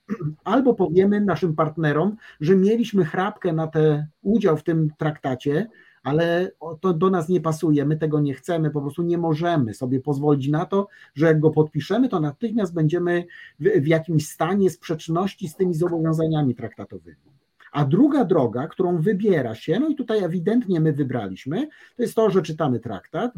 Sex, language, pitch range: male, Polish, 150-190 Hz